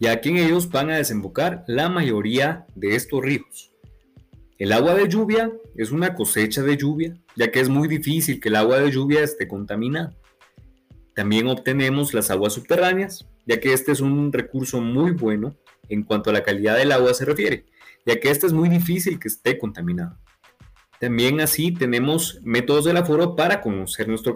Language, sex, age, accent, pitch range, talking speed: Spanish, male, 30-49, Mexican, 110-150 Hz, 180 wpm